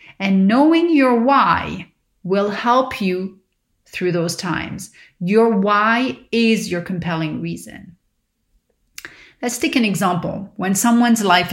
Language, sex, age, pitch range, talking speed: English, female, 30-49, 180-225 Hz, 120 wpm